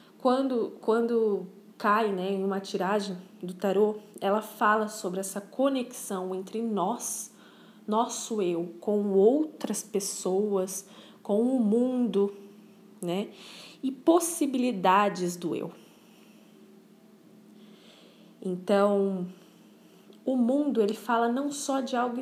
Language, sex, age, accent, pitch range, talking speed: Portuguese, female, 10-29, Brazilian, 200-245 Hz, 105 wpm